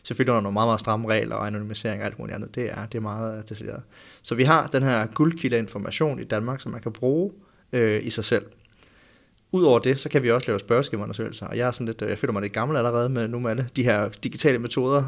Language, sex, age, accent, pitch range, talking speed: Danish, male, 30-49, native, 110-135 Hz, 245 wpm